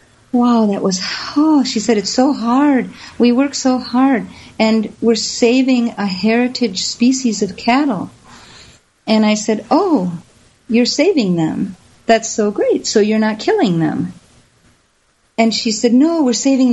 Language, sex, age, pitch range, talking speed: English, female, 50-69, 195-250 Hz, 150 wpm